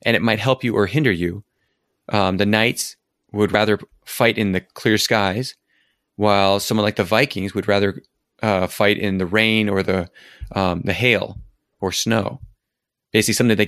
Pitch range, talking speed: 100-115 Hz, 175 wpm